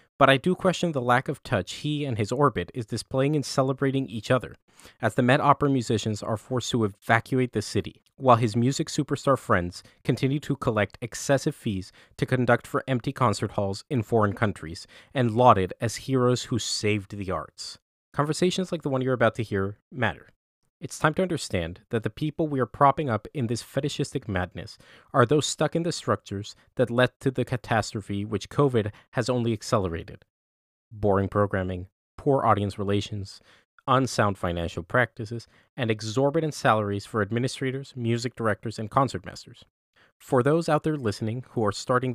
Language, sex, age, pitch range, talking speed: English, male, 30-49, 105-135 Hz, 170 wpm